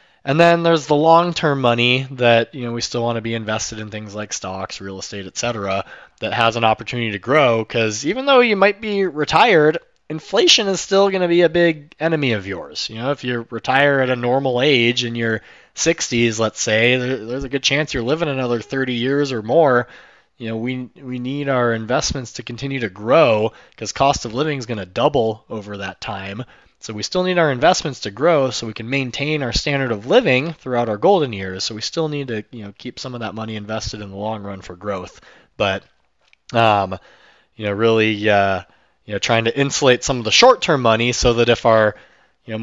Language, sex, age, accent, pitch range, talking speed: English, male, 20-39, American, 105-135 Hz, 220 wpm